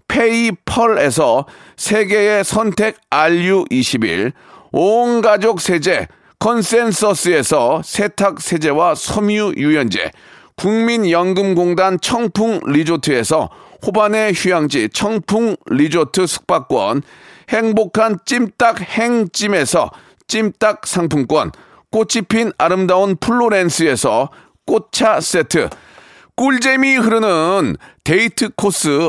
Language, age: Korean, 40-59